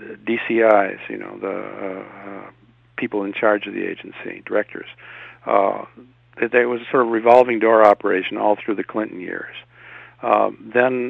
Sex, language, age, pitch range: male, English, 60-79, 105-120 Hz